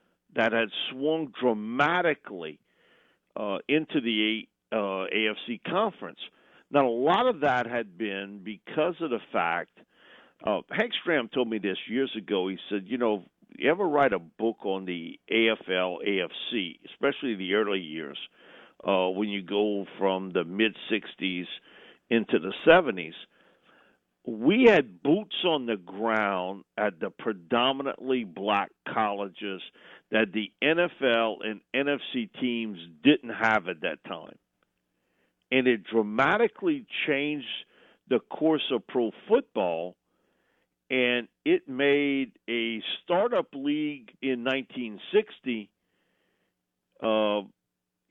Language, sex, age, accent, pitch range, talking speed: English, male, 50-69, American, 100-140 Hz, 115 wpm